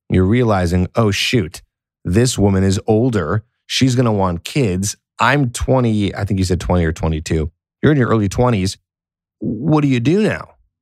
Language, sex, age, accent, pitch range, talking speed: English, male, 20-39, American, 90-120 Hz, 175 wpm